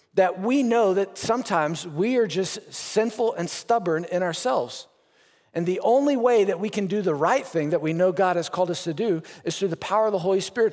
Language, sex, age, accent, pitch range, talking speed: English, male, 40-59, American, 185-250 Hz, 230 wpm